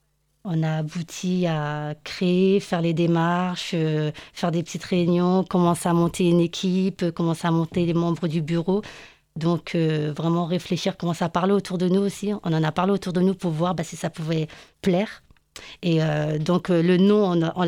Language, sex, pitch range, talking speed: French, female, 165-190 Hz, 195 wpm